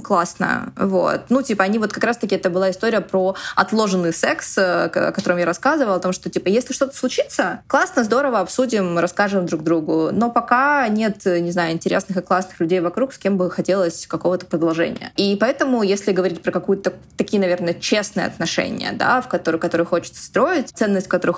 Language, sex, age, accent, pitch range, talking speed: Russian, female, 20-39, native, 175-215 Hz, 185 wpm